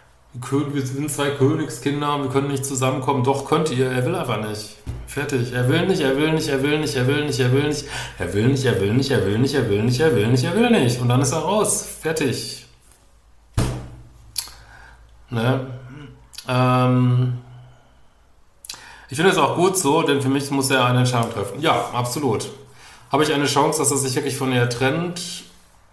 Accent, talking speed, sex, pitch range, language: German, 195 wpm, male, 115-140 Hz, German